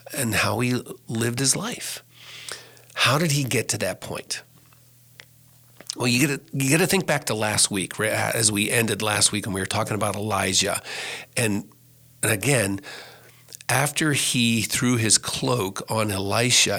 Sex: male